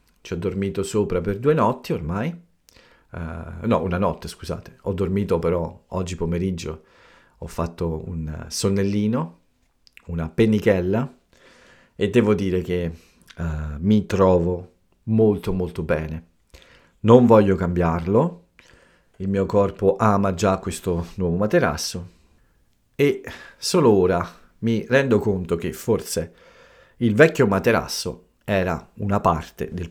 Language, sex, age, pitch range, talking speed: Italian, male, 50-69, 85-105 Hz, 120 wpm